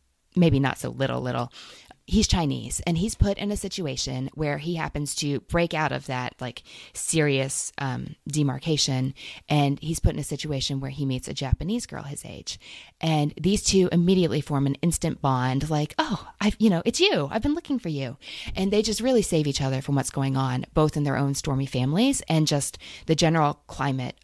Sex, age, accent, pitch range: female, 20-39, American, 135-165 Hz